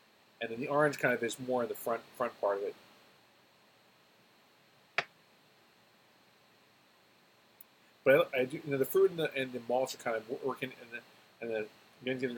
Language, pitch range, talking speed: English, 115-150 Hz, 185 wpm